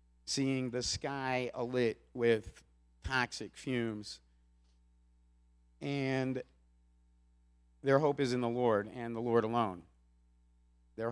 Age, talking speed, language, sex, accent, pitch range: 50-69, 105 wpm, English, male, American, 90-135 Hz